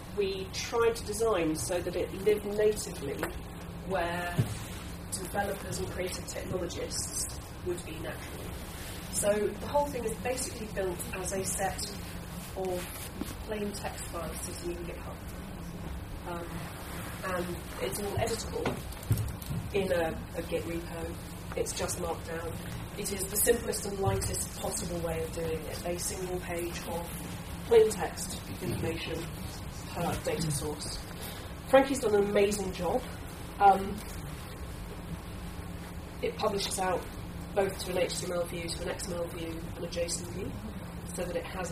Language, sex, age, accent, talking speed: English, female, 30-49, British, 135 wpm